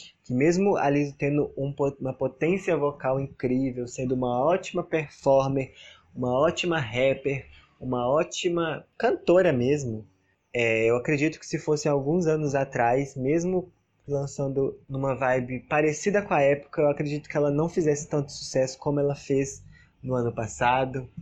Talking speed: 145 wpm